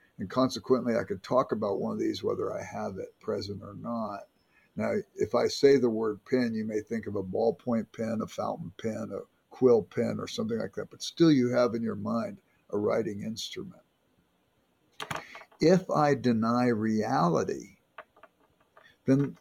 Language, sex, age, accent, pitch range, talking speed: English, male, 60-79, American, 110-145 Hz, 170 wpm